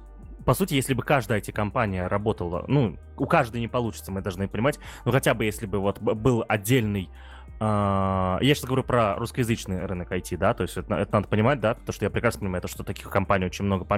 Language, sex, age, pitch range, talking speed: Russian, male, 20-39, 100-125 Hz, 225 wpm